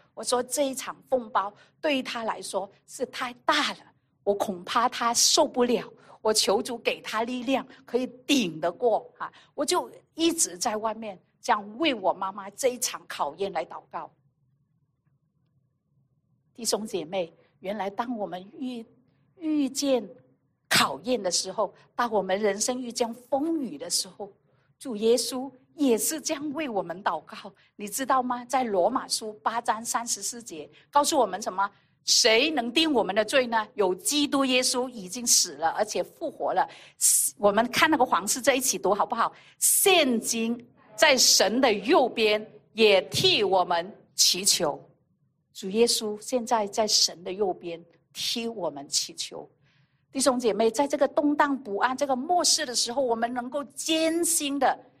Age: 50-69